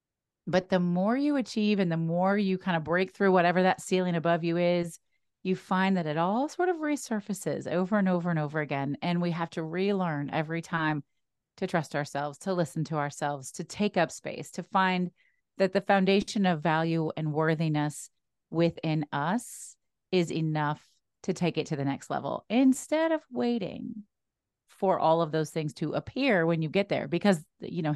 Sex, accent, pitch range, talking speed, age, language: female, American, 155-200 Hz, 190 wpm, 30-49, English